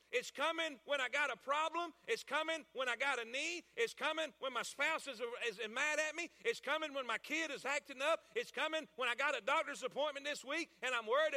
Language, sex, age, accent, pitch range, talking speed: English, male, 40-59, American, 240-315 Hz, 240 wpm